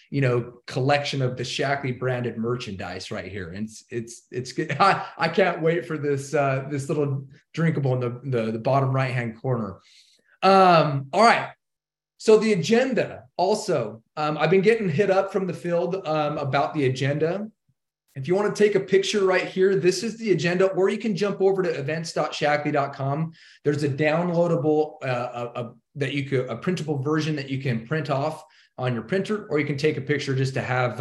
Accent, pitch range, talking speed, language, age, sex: American, 130-170 Hz, 200 wpm, English, 30-49, male